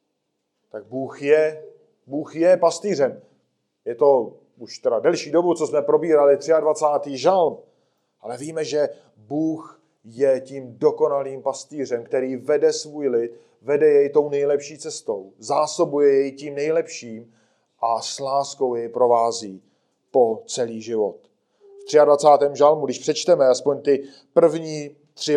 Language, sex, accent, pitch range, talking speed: Czech, male, native, 140-175 Hz, 130 wpm